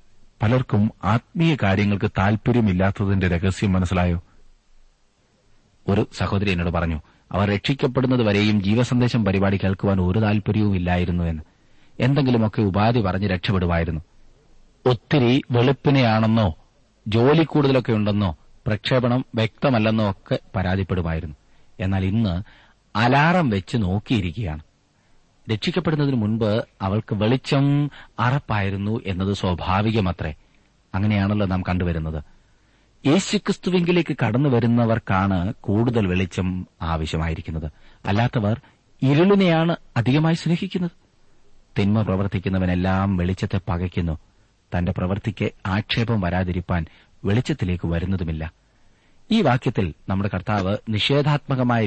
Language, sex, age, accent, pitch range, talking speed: Malayalam, male, 30-49, native, 95-120 Hz, 85 wpm